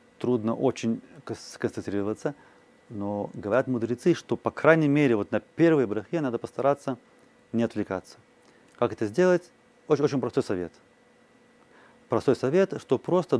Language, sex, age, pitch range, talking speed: Russian, male, 30-49, 110-165 Hz, 130 wpm